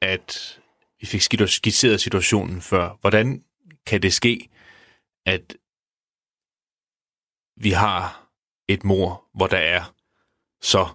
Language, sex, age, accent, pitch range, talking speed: Danish, male, 30-49, native, 90-115 Hz, 105 wpm